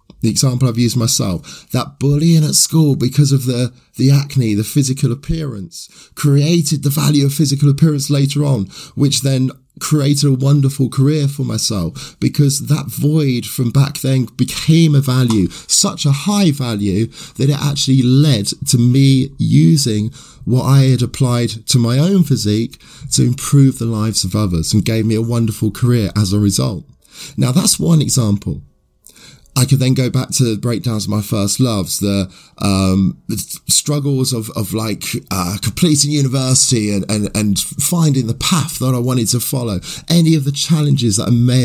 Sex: male